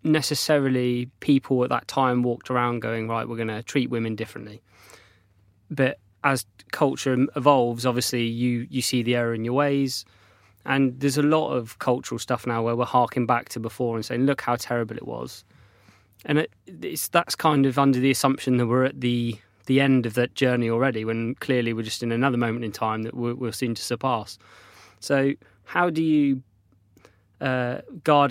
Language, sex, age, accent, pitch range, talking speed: English, male, 20-39, British, 110-130 Hz, 190 wpm